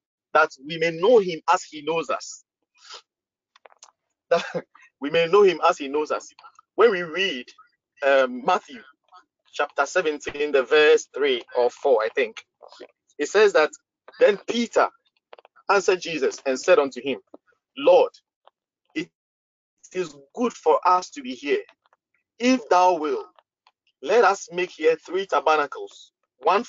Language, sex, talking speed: English, male, 135 wpm